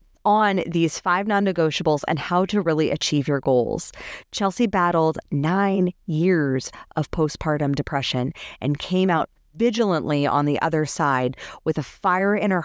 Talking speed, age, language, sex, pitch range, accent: 145 wpm, 30-49, English, female, 145-200 Hz, American